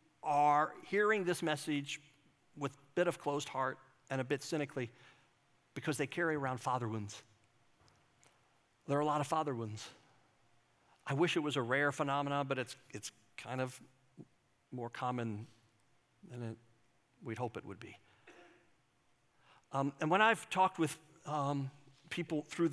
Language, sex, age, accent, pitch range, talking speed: English, male, 50-69, American, 130-170 Hz, 150 wpm